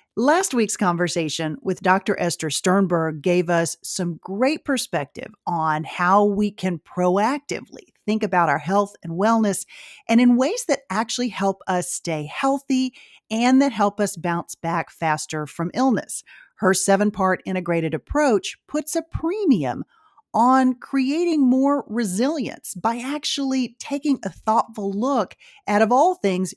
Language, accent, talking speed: English, American, 140 wpm